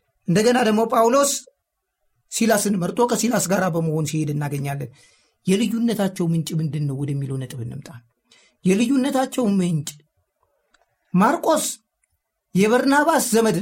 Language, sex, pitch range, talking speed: Amharic, male, 180-235 Hz, 90 wpm